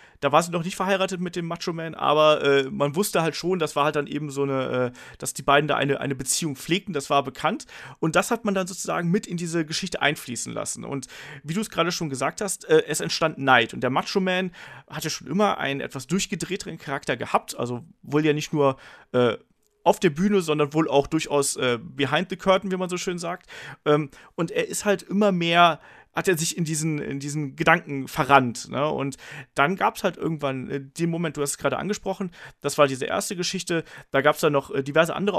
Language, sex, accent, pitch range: German, male, German, 140-180 Hz